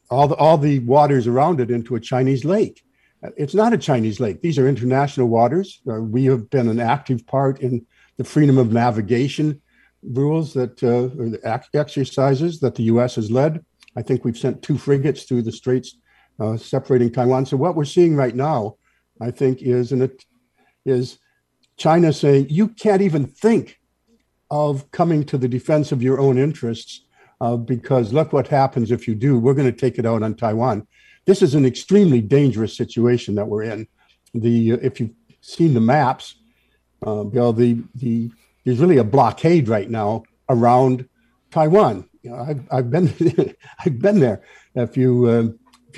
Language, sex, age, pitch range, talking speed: English, male, 60-79, 120-150 Hz, 180 wpm